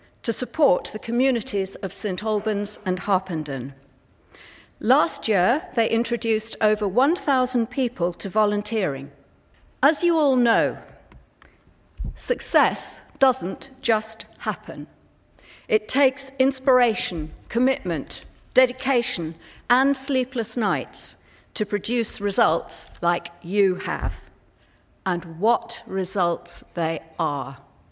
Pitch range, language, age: 175-245 Hz, English, 50-69